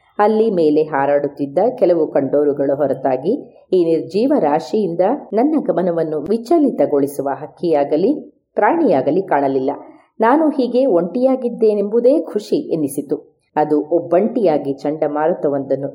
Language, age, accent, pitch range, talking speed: Kannada, 30-49, native, 150-240 Hz, 85 wpm